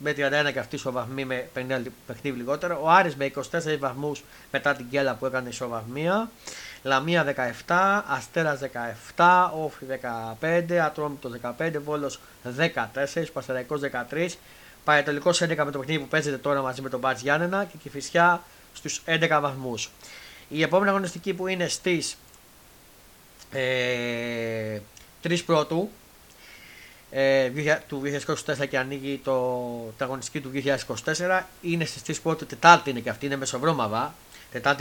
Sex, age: male, 30-49